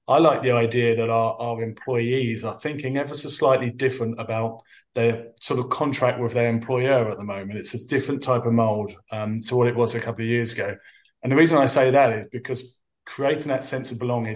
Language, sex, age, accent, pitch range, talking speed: English, male, 20-39, British, 110-125 Hz, 225 wpm